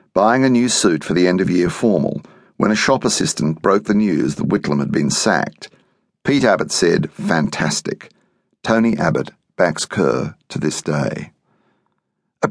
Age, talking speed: 50-69, 165 wpm